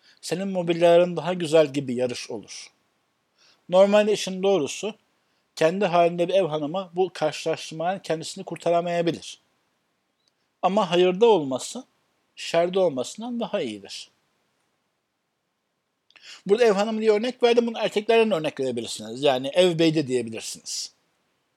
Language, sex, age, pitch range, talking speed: Turkish, male, 60-79, 155-190 Hz, 115 wpm